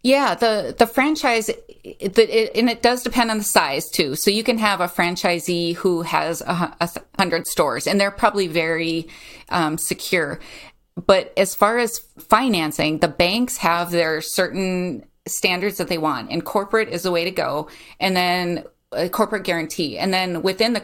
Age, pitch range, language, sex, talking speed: 30-49, 170-205 Hz, English, female, 175 wpm